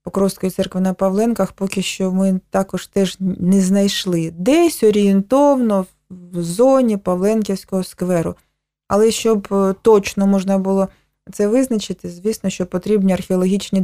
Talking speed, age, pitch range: 120 wpm, 20-39, 180-200 Hz